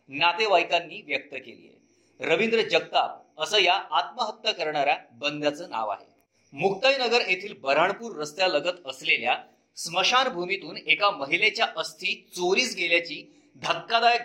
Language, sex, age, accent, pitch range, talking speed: Marathi, male, 40-59, native, 165-220 Hz, 75 wpm